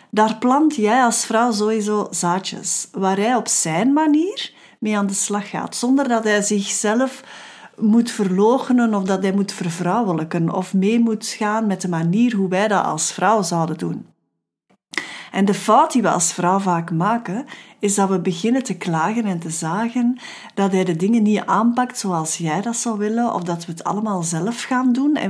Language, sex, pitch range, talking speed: Dutch, female, 180-240 Hz, 190 wpm